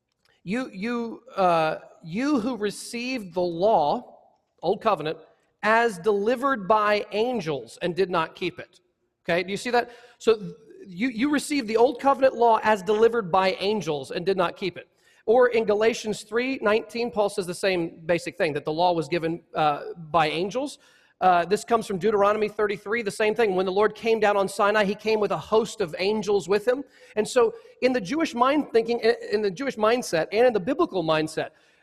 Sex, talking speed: male, 190 wpm